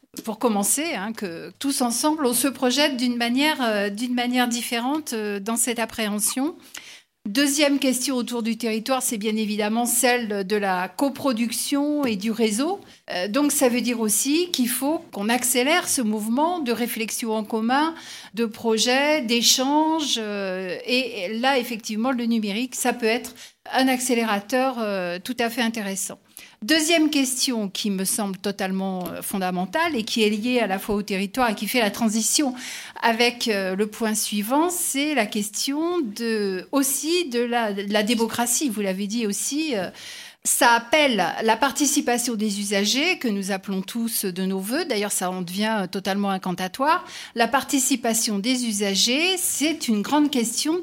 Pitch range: 215-280 Hz